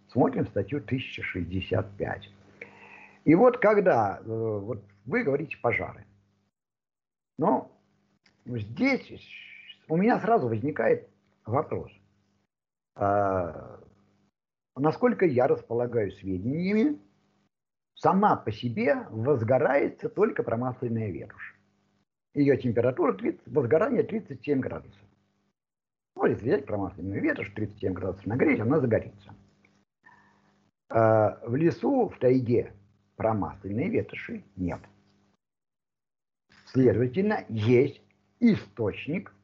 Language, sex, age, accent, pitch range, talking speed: Russian, male, 50-69, native, 100-145 Hz, 80 wpm